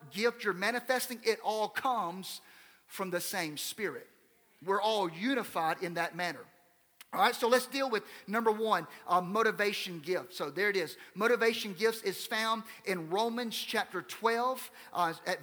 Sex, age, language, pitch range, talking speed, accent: male, 40-59, English, 195-250 Hz, 160 wpm, American